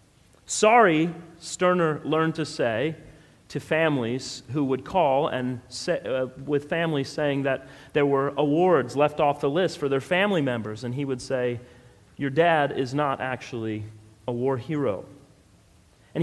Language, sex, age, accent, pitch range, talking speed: English, male, 40-59, American, 140-195 Hz, 150 wpm